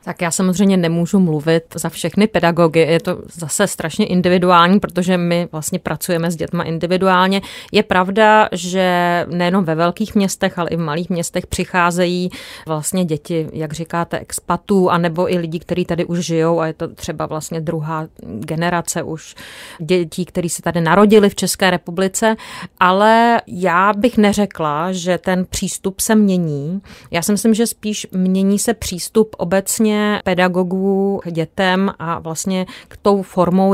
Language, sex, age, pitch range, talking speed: Czech, female, 30-49, 170-195 Hz, 155 wpm